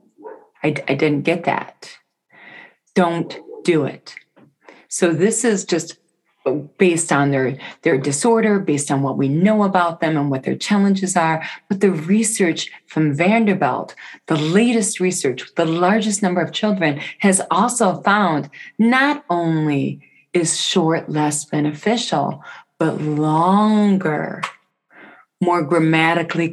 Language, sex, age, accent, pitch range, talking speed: English, female, 40-59, American, 150-195 Hz, 125 wpm